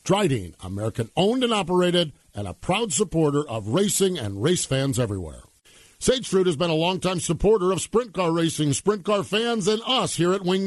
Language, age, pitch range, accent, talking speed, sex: English, 50-69, 140-200 Hz, American, 180 wpm, male